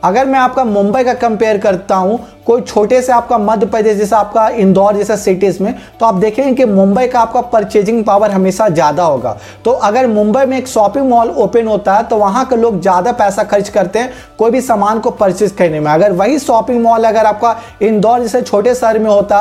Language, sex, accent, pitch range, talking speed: Hindi, male, native, 205-245 Hz, 70 wpm